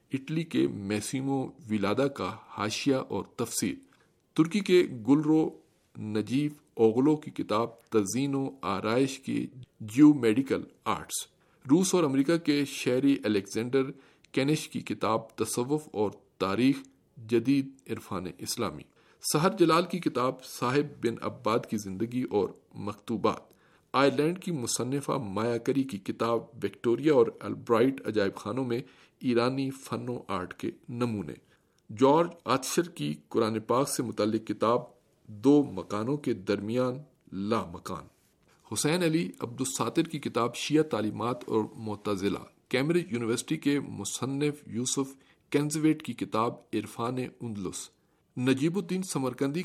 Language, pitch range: Urdu, 110-145 Hz